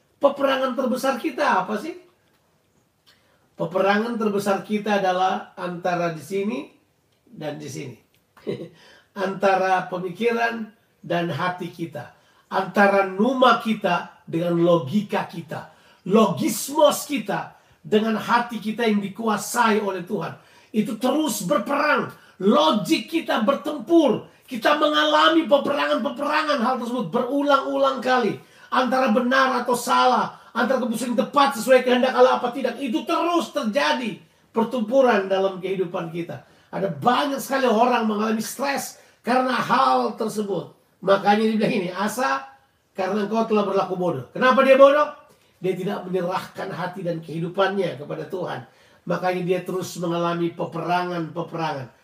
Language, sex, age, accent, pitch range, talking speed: Indonesian, male, 40-59, native, 185-260 Hz, 120 wpm